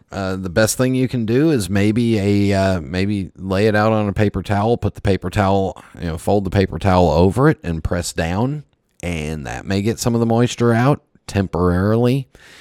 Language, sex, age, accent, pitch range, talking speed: English, male, 40-59, American, 85-105 Hz, 210 wpm